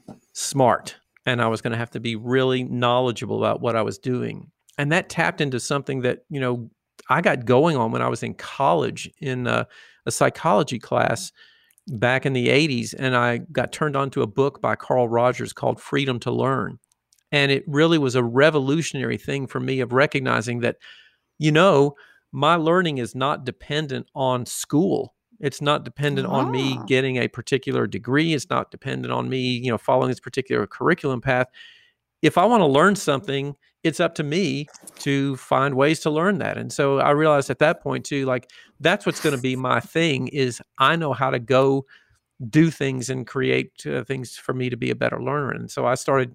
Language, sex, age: English, male, 50-69